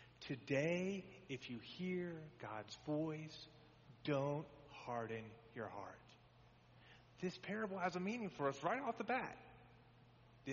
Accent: American